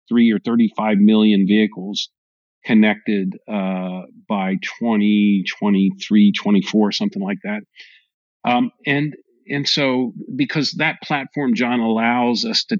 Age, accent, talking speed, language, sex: 50-69, American, 115 wpm, English, male